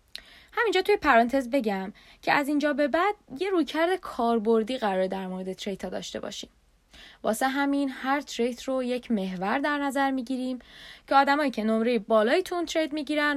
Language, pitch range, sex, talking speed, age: Persian, 220-305 Hz, female, 165 wpm, 10-29